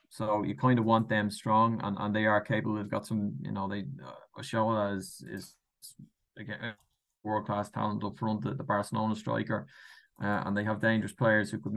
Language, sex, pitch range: English, male, 105-120 Hz